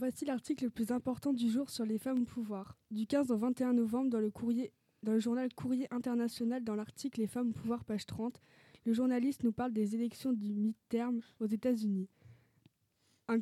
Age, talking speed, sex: 20-39, 195 wpm, female